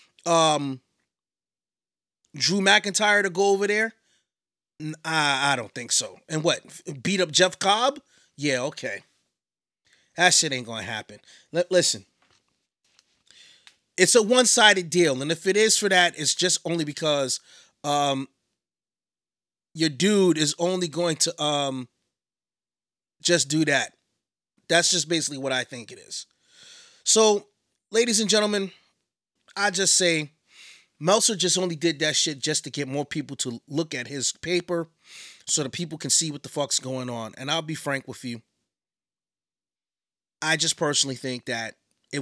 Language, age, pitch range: English, 30-49, 140-180 Hz